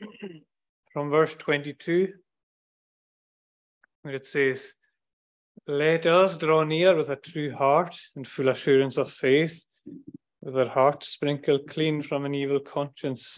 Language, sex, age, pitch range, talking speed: English, male, 30-49, 130-165 Hz, 125 wpm